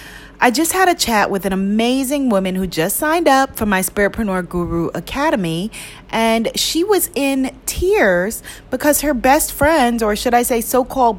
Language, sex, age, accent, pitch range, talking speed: English, female, 30-49, American, 205-275 Hz, 170 wpm